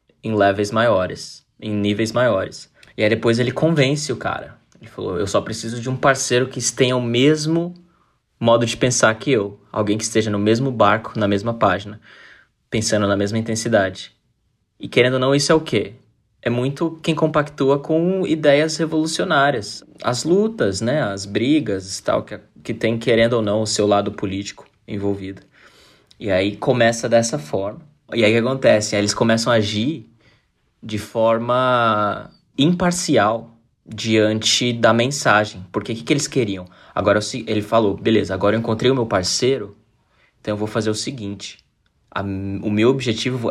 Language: Portuguese